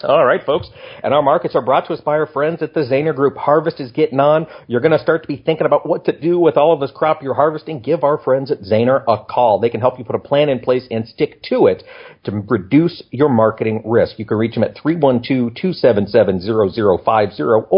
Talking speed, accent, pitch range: 235 wpm, American, 120-160 Hz